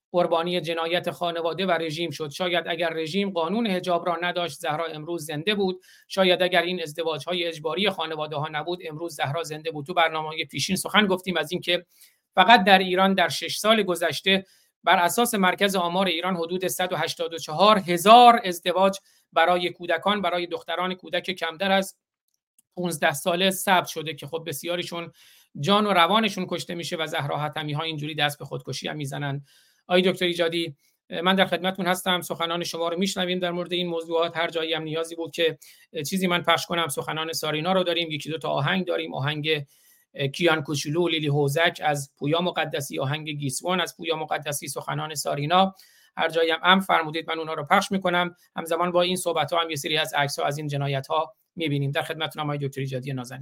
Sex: male